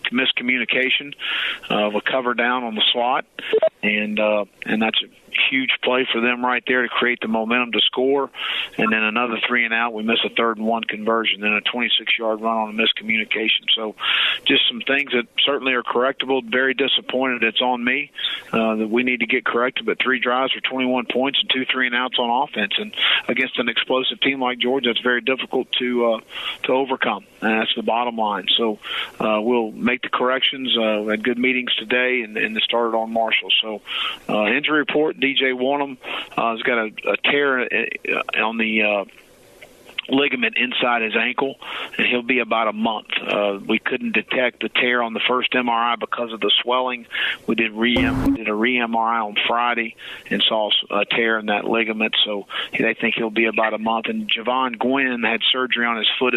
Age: 40-59